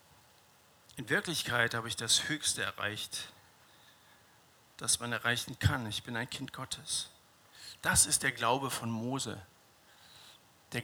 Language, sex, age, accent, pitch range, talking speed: German, male, 50-69, German, 115-145 Hz, 125 wpm